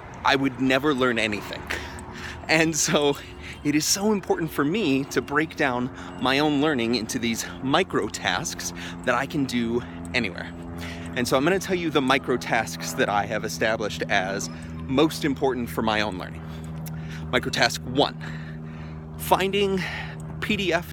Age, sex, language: 30-49, male, English